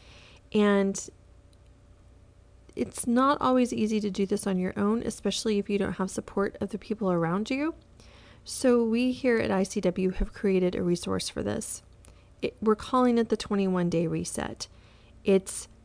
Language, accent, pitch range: English, American, 165-210 Hz